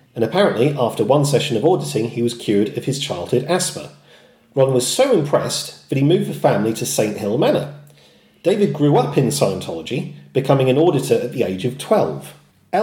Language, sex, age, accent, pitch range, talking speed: English, male, 40-59, British, 120-155 Hz, 185 wpm